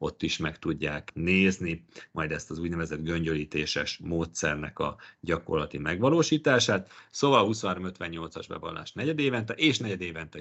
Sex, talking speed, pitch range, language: male, 135 wpm, 85-110 Hz, Hungarian